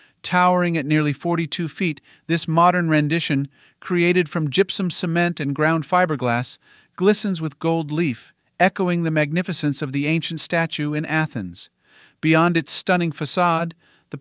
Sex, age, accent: male, 40-59, American